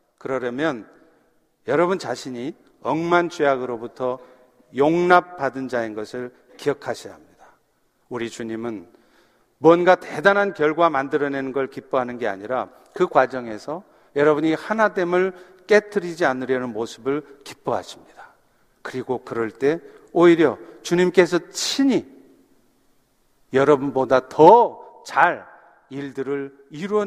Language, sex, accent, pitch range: Korean, male, native, 120-165 Hz